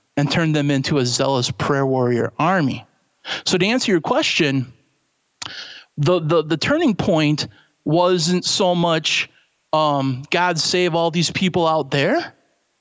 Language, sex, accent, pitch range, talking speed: English, male, American, 140-190 Hz, 140 wpm